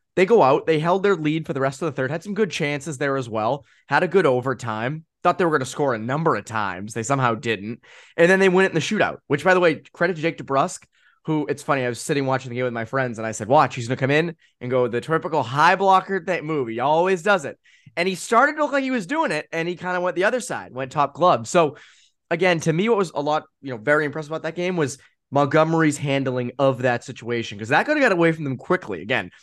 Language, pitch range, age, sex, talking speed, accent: English, 125-165 Hz, 20-39, male, 280 wpm, American